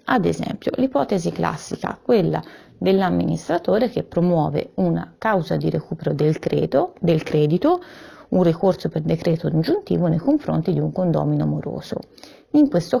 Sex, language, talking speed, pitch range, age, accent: female, Italian, 135 wpm, 160-205 Hz, 30-49, native